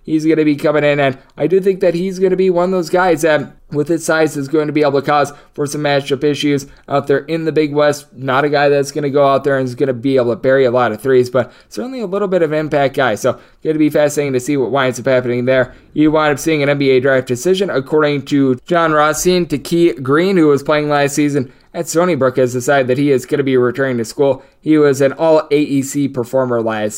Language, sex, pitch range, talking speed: English, male, 130-155 Hz, 270 wpm